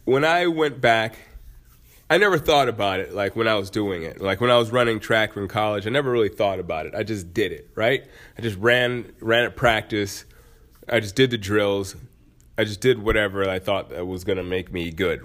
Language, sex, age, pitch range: English, male, 20-39, 95-130 Hz